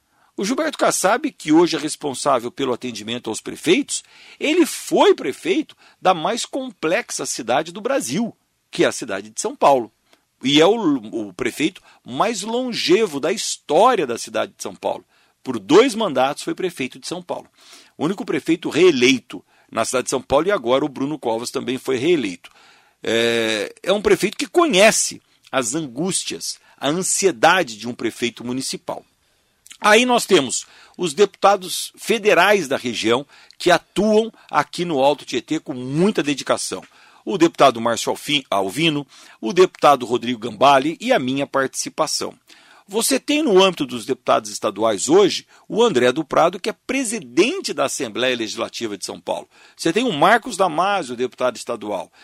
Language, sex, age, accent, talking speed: Portuguese, male, 50-69, Brazilian, 155 wpm